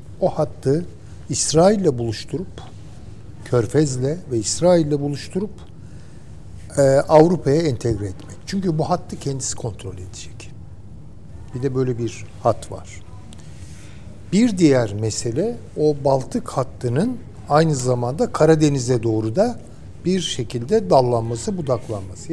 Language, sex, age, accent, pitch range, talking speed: Turkish, male, 60-79, native, 105-155 Hz, 100 wpm